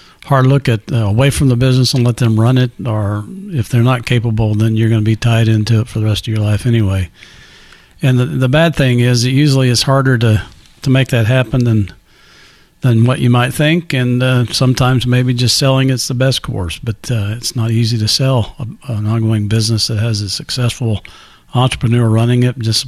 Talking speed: 220 wpm